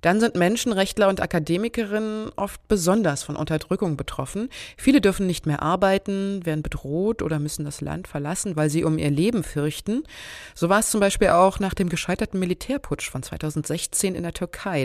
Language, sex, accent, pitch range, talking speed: German, female, German, 155-205 Hz, 175 wpm